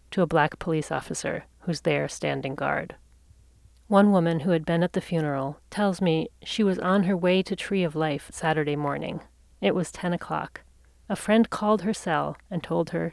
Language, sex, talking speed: English, female, 190 wpm